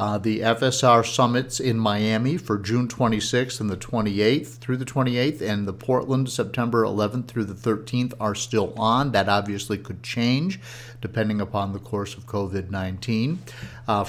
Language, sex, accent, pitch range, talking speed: English, male, American, 100-120 Hz, 160 wpm